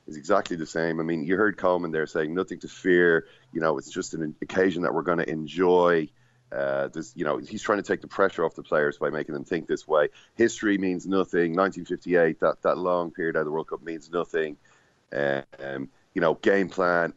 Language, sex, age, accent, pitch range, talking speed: English, male, 30-49, Irish, 75-95 Hz, 225 wpm